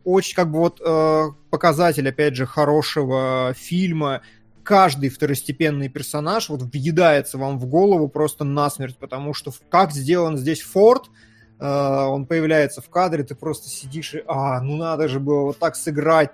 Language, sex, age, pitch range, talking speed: Russian, male, 20-39, 145-170 Hz, 160 wpm